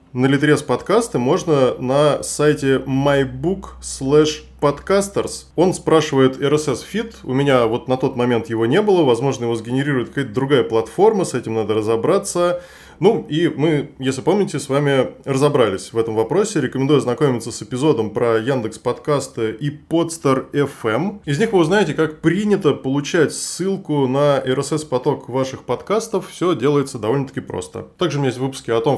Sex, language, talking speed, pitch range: male, Russian, 155 wpm, 125-155 Hz